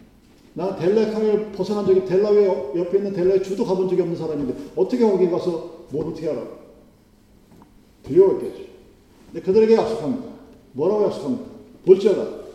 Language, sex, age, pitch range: Korean, male, 40-59, 145-215 Hz